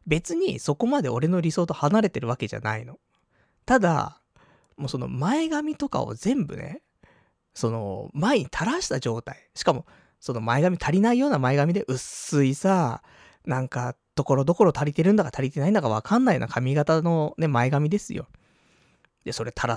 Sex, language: male, Japanese